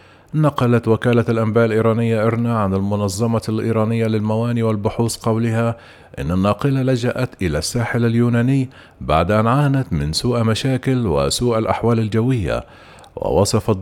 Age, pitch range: 50-69, 105-120 Hz